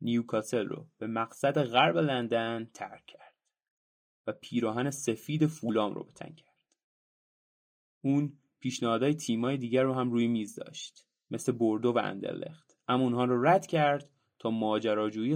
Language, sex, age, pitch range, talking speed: Persian, male, 30-49, 120-155 Hz, 135 wpm